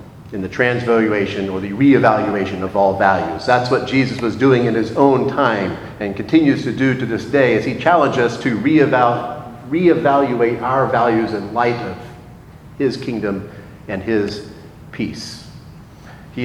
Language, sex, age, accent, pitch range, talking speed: English, male, 40-59, American, 110-135 Hz, 155 wpm